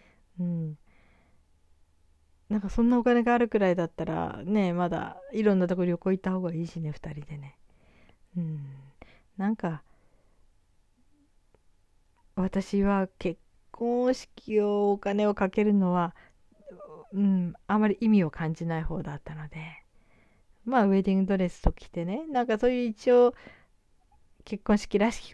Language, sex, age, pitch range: Japanese, female, 40-59, 160-205 Hz